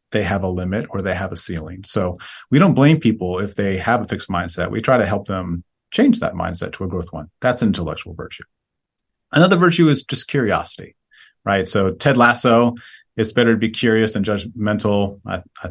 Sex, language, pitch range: male, English, 95-125 Hz